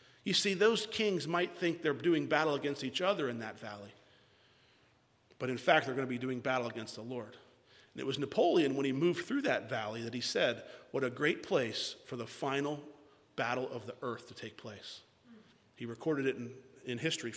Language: English